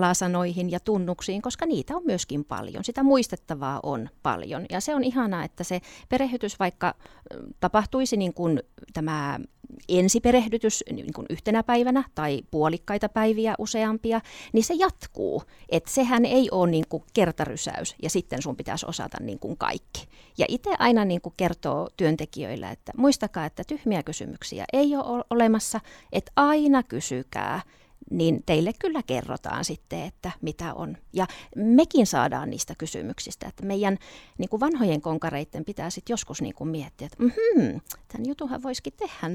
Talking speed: 150 wpm